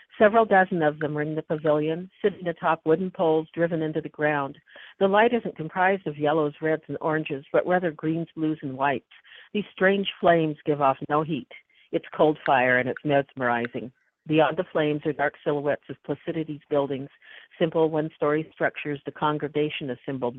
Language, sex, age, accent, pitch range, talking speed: English, female, 50-69, American, 140-165 Hz, 175 wpm